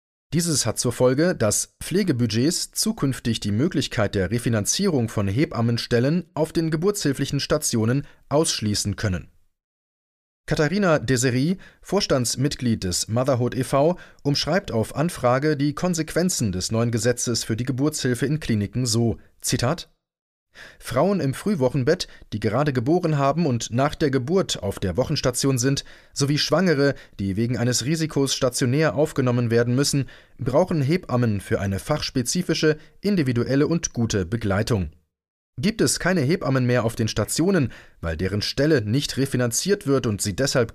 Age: 30-49